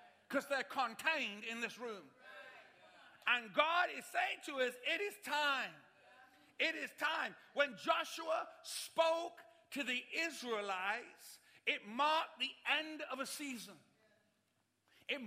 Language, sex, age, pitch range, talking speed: English, male, 50-69, 265-320 Hz, 125 wpm